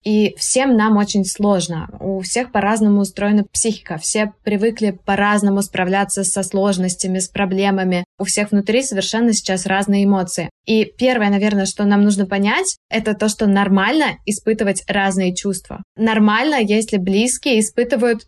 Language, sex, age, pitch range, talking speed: Russian, female, 20-39, 195-230 Hz, 140 wpm